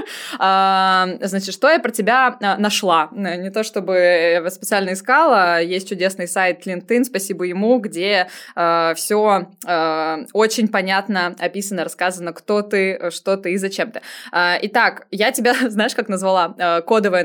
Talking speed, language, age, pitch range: 130 wpm, Russian, 20-39, 165-195 Hz